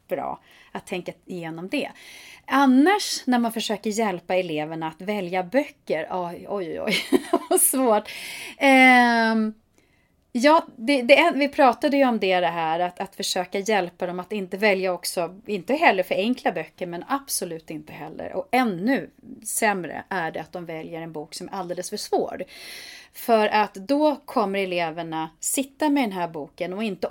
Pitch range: 180-250 Hz